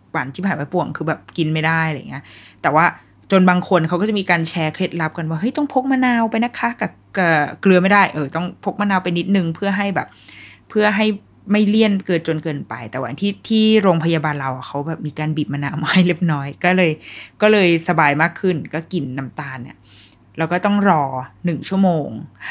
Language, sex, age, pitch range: Thai, female, 20-39, 150-195 Hz